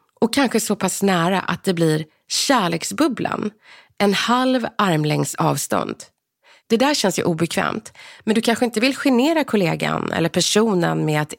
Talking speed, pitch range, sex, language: 155 wpm, 170-255 Hz, female, English